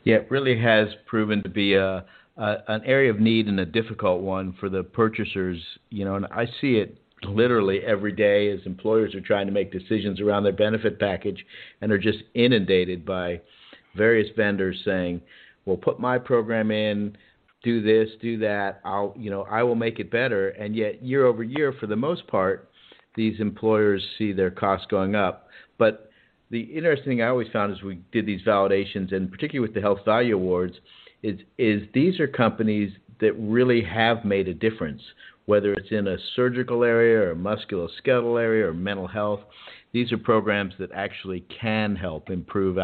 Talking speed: 185 wpm